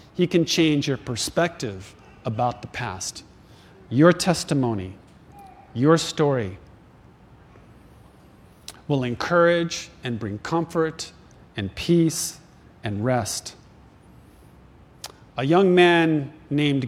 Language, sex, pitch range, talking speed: English, male, 120-170 Hz, 90 wpm